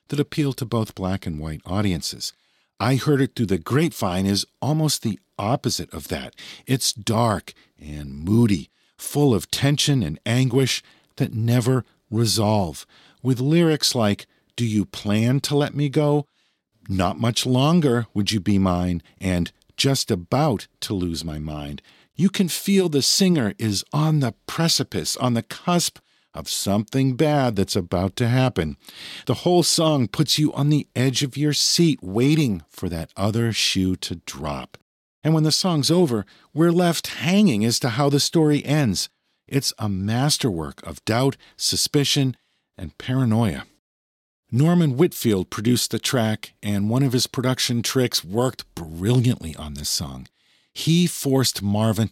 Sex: male